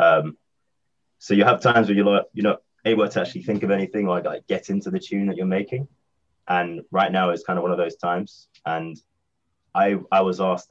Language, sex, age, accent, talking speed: English, male, 20-39, British, 230 wpm